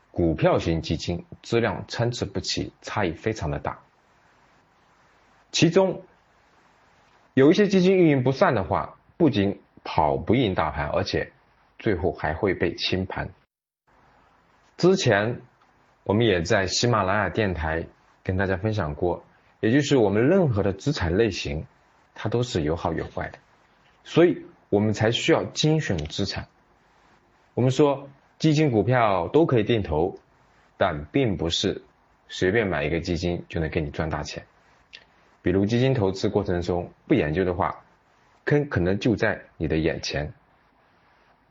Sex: male